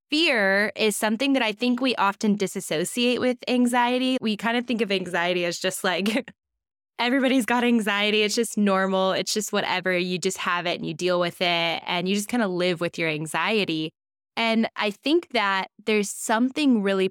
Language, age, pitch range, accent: English, 10-29, 170-215 Hz, American